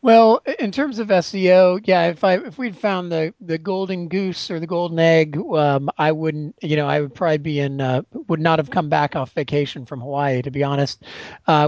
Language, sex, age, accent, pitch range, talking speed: English, male, 30-49, American, 150-185 Hz, 220 wpm